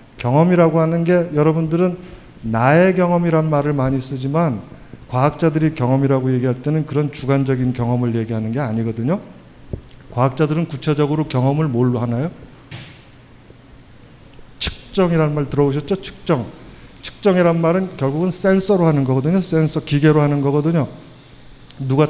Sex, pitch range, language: male, 130-165 Hz, Korean